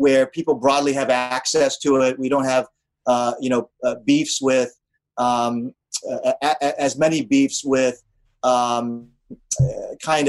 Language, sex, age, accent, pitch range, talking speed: English, male, 30-49, American, 125-155 Hz, 145 wpm